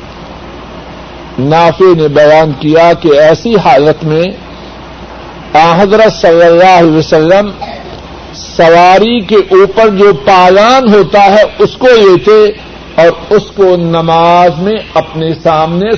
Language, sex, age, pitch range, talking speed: Urdu, male, 60-79, 150-190 Hz, 115 wpm